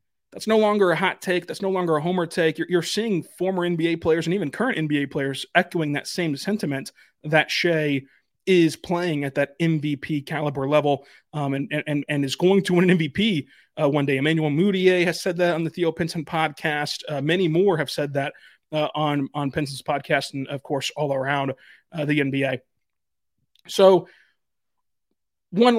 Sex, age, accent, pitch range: male, 30-49, American, 145-185 Hz